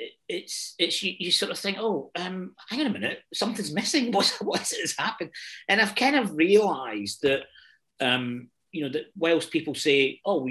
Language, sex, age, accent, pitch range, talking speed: English, male, 40-59, British, 130-180 Hz, 195 wpm